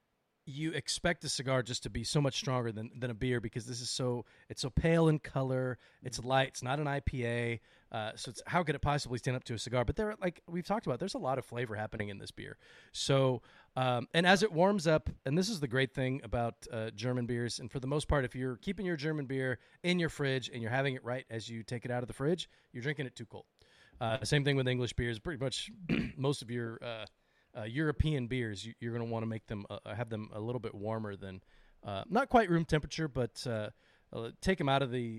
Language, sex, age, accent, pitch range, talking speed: English, male, 30-49, American, 110-140 Hz, 250 wpm